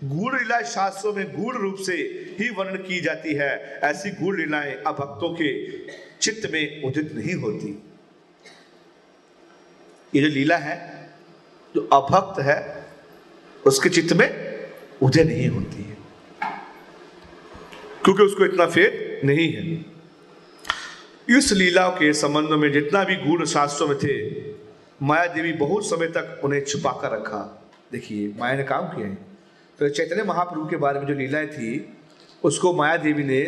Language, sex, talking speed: Hindi, male, 145 wpm